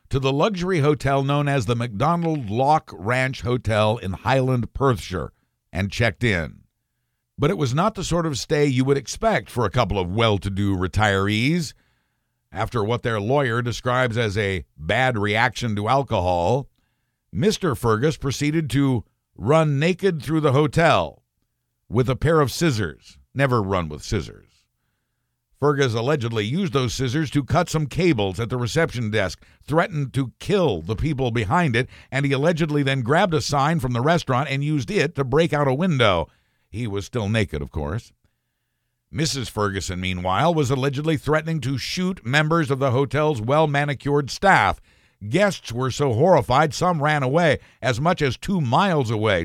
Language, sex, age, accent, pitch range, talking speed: English, male, 60-79, American, 110-150 Hz, 165 wpm